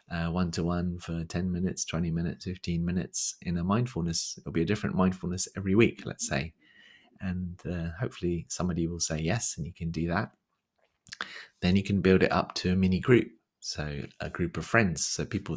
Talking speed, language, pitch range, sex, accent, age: 195 wpm, English, 80-90 Hz, male, British, 30-49